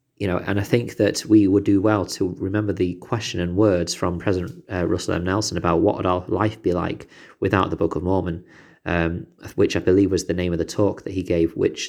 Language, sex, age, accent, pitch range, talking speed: English, male, 30-49, British, 85-105 Hz, 240 wpm